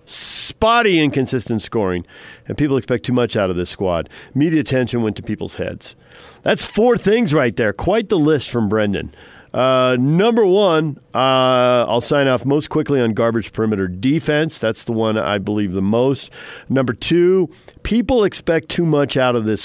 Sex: male